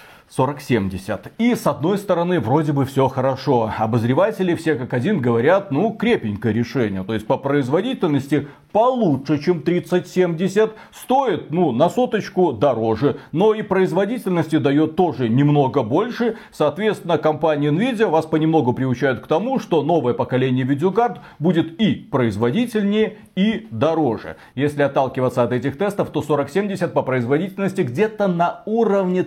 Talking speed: 135 wpm